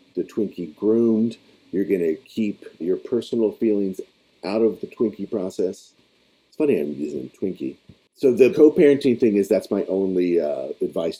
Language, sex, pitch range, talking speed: English, male, 85-140 Hz, 160 wpm